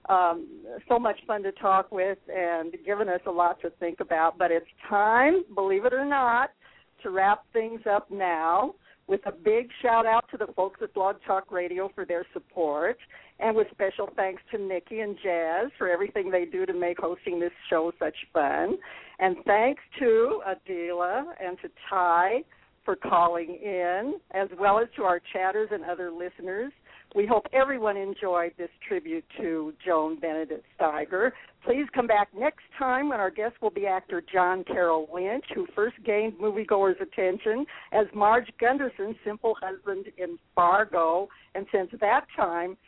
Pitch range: 175-225 Hz